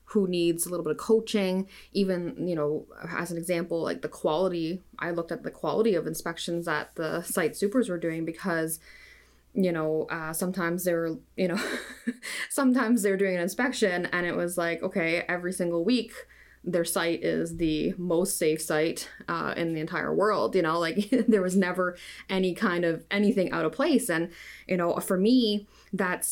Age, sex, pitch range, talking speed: 20-39, female, 165-195 Hz, 185 wpm